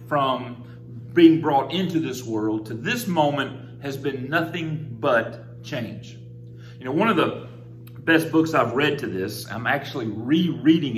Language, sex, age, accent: English, male, 40-59, American